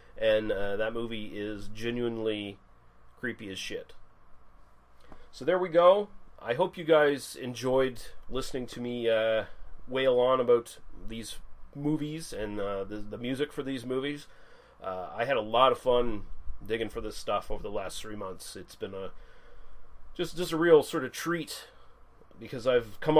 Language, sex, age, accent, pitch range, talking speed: English, male, 30-49, American, 115-150 Hz, 165 wpm